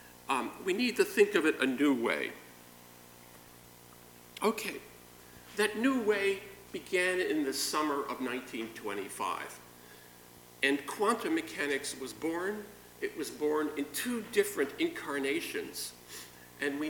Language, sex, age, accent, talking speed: English, male, 50-69, American, 120 wpm